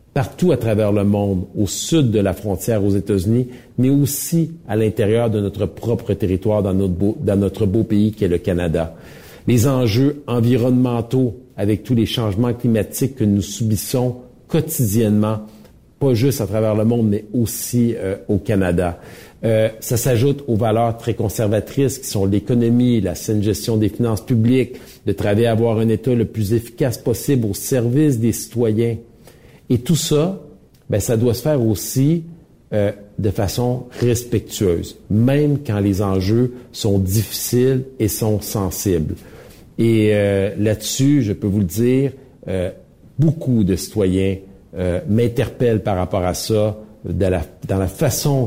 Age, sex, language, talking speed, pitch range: 50-69, male, French, 160 wpm, 100-125 Hz